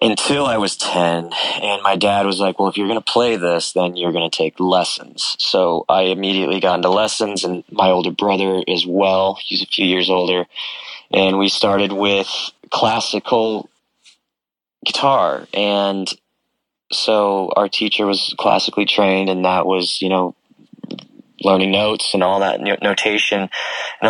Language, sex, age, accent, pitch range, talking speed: English, male, 20-39, American, 90-105 Hz, 160 wpm